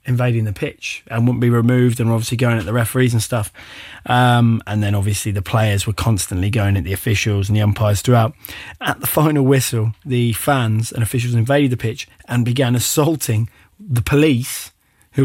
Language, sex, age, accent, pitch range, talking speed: English, male, 20-39, British, 115-135 Hz, 190 wpm